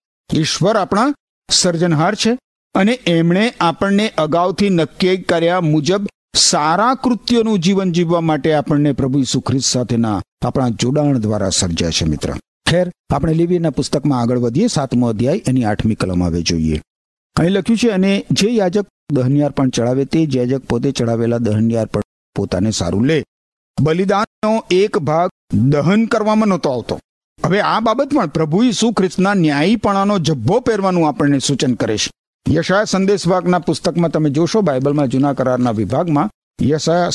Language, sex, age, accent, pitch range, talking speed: Gujarati, male, 50-69, native, 130-200 Hz, 100 wpm